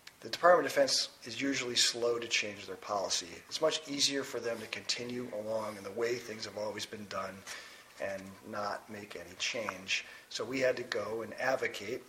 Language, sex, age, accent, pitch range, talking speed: English, male, 40-59, American, 120-145 Hz, 195 wpm